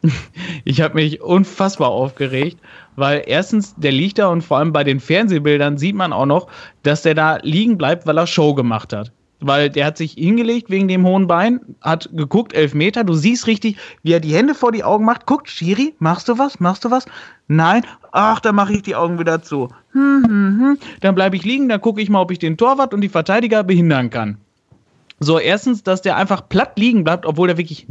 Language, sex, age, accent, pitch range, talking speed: German, male, 30-49, German, 150-195 Hz, 220 wpm